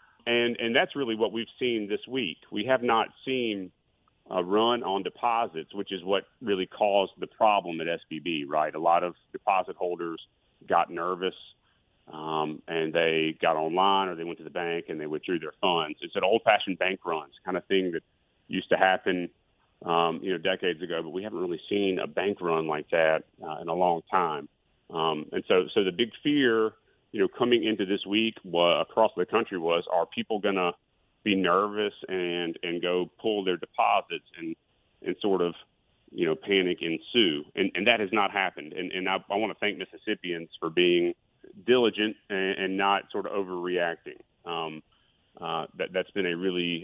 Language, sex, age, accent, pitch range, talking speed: English, male, 40-59, American, 85-105 Hz, 195 wpm